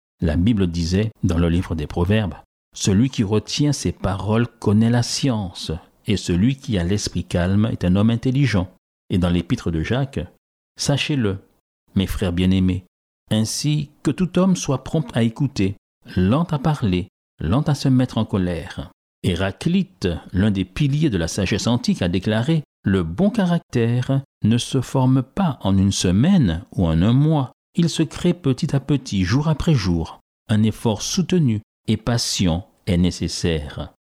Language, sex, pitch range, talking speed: French, male, 90-135 Hz, 170 wpm